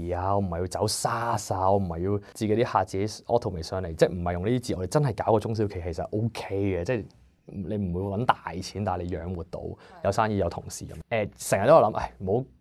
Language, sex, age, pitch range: Chinese, male, 20-39, 95-115 Hz